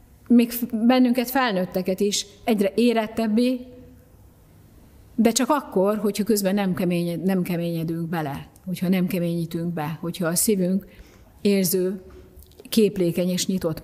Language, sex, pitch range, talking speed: Hungarian, female, 170-200 Hz, 110 wpm